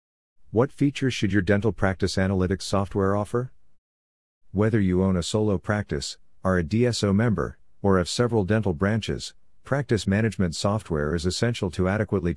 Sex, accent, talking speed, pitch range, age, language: male, American, 150 wpm, 85-100 Hz, 50-69, English